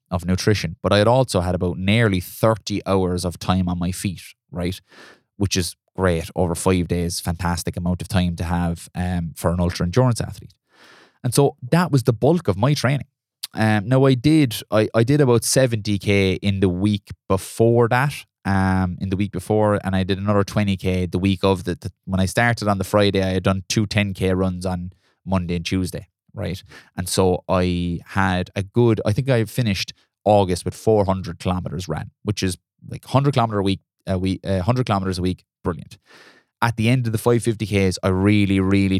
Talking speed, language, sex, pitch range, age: 200 wpm, English, male, 90-110 Hz, 20-39